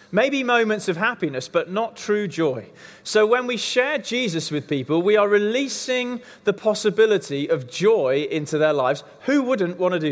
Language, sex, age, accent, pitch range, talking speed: English, male, 30-49, British, 170-215 Hz, 180 wpm